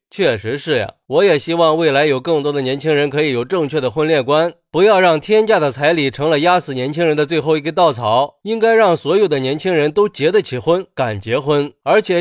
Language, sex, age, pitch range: Chinese, male, 30-49, 150-210 Hz